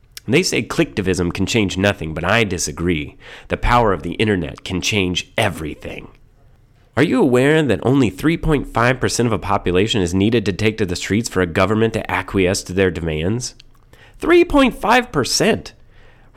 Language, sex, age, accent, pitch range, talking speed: English, male, 30-49, American, 95-150 Hz, 155 wpm